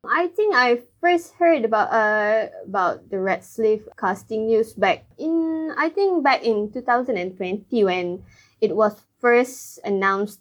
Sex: female